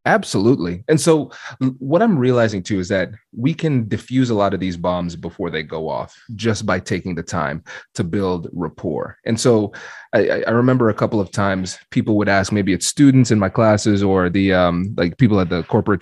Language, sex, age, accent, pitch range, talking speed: English, male, 30-49, American, 95-120 Hz, 205 wpm